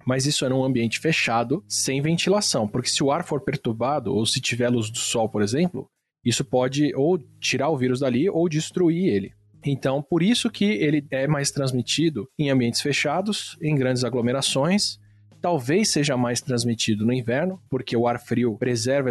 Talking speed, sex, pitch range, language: 180 wpm, male, 120-155 Hz, Portuguese